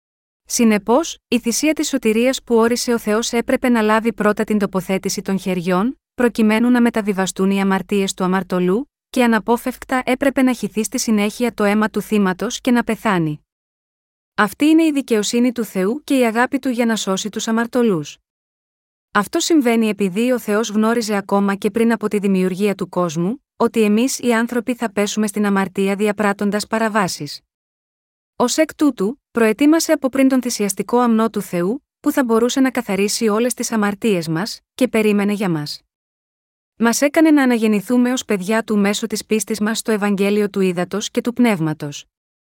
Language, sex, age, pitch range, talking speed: Greek, female, 30-49, 205-245 Hz, 170 wpm